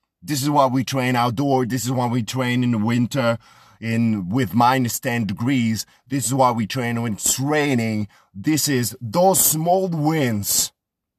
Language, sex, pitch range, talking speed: English, male, 105-135 Hz, 170 wpm